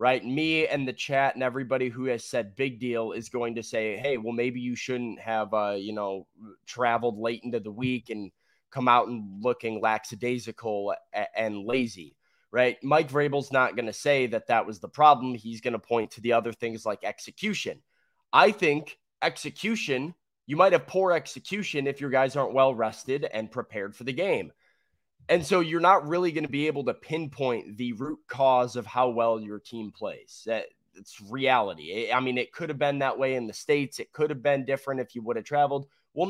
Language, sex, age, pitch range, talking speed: English, male, 20-39, 120-150 Hz, 205 wpm